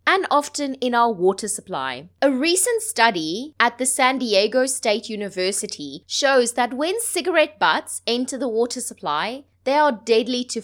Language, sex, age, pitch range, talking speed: English, female, 20-39, 205-285 Hz, 160 wpm